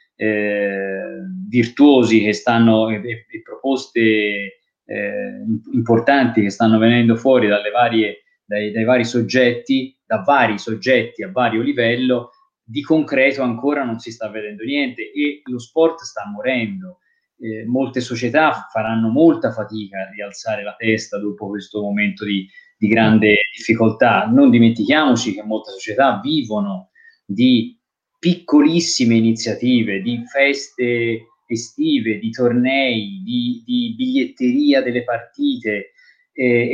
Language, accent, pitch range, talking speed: Italian, native, 110-165 Hz, 125 wpm